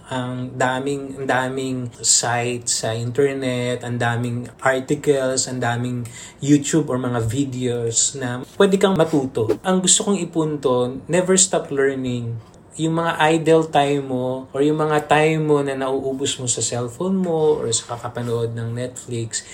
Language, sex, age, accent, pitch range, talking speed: Filipino, male, 20-39, native, 120-150 Hz, 145 wpm